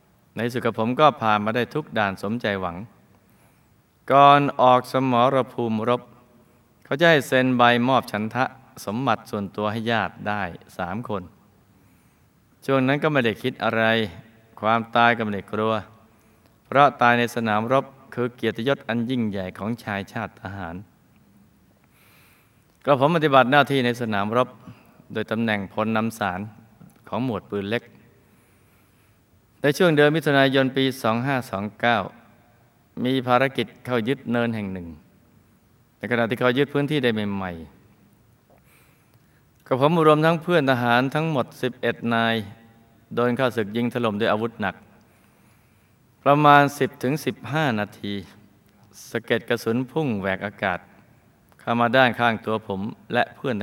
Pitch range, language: 105-130 Hz, Thai